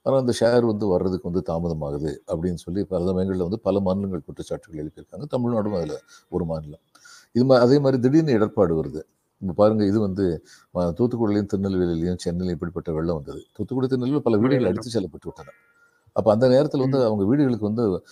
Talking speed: 170 wpm